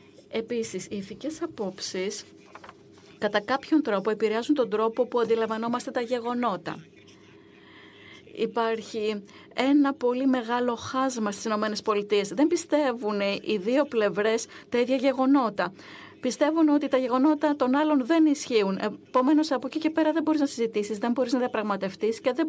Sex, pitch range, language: female, 220-270 Hz, Greek